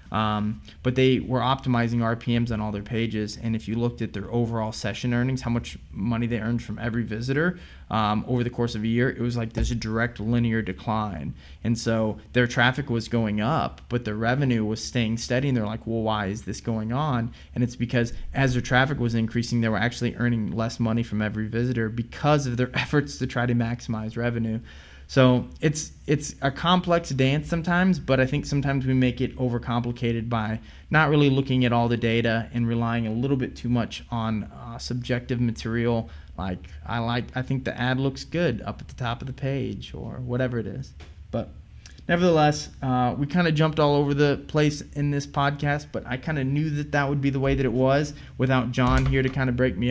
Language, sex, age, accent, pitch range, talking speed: English, male, 20-39, American, 115-135 Hz, 215 wpm